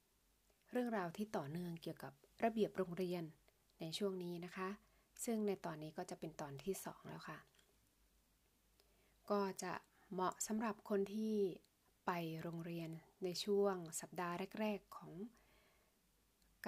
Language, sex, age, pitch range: Thai, female, 20-39, 170-205 Hz